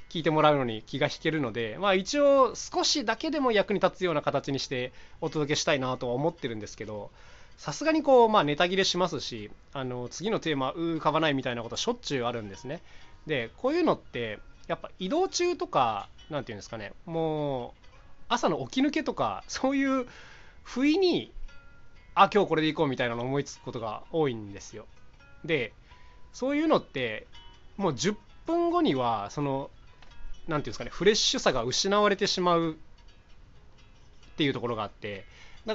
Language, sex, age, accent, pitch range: Japanese, male, 20-39, native, 120-205 Hz